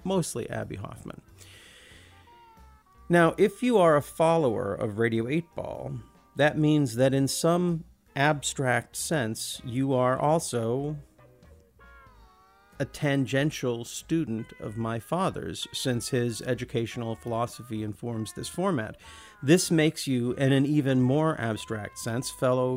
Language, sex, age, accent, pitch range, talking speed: English, male, 50-69, American, 115-145 Hz, 120 wpm